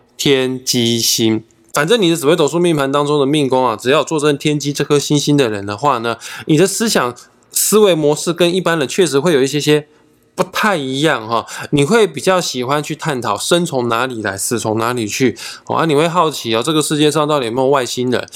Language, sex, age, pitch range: Chinese, male, 20-39, 120-150 Hz